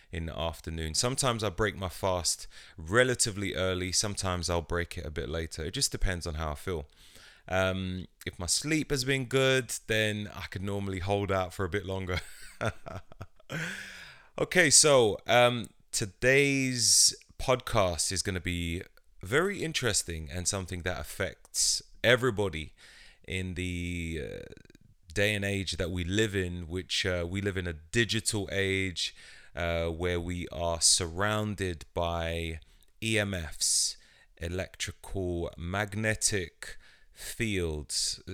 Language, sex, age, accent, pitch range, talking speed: English, male, 30-49, British, 85-105 Hz, 135 wpm